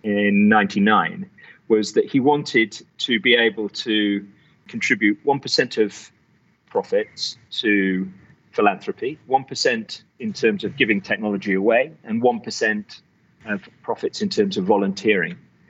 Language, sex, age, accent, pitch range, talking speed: English, male, 40-59, British, 100-125 Hz, 120 wpm